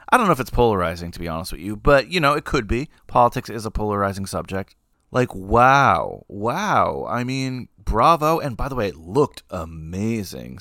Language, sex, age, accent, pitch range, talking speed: English, male, 30-49, American, 100-130 Hz, 200 wpm